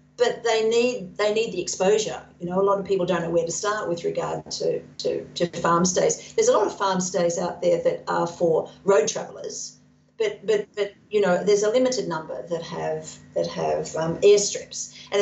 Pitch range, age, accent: 170-215 Hz, 50-69, Australian